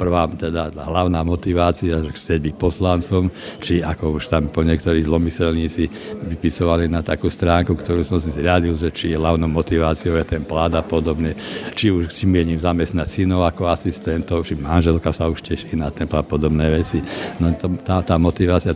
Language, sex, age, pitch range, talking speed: Slovak, male, 60-79, 80-90 Hz, 175 wpm